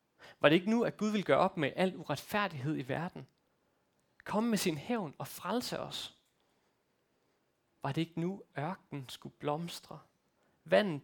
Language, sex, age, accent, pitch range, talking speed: Danish, male, 30-49, native, 145-200 Hz, 160 wpm